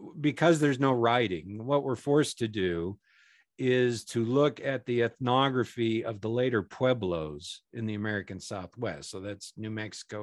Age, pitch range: 50-69, 100-130 Hz